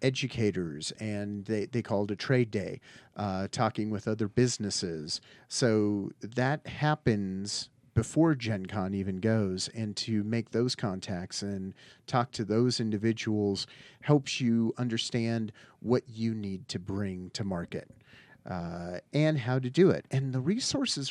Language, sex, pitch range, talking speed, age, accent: English, male, 105-135 Hz, 140 wpm, 40-59, American